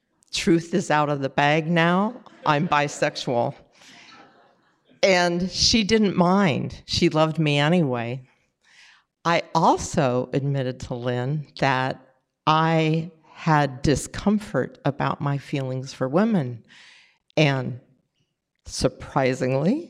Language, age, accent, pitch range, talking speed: English, 50-69, American, 145-185 Hz, 100 wpm